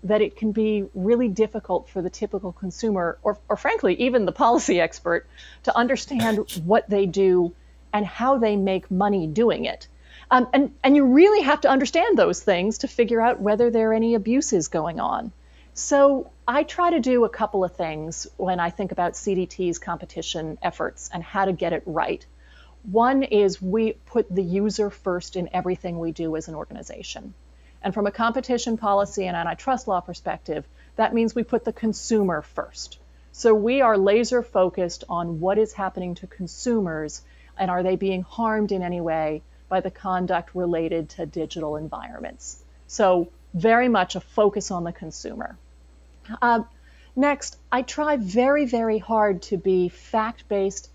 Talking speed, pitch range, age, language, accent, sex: 170 wpm, 175-225 Hz, 30-49, English, American, female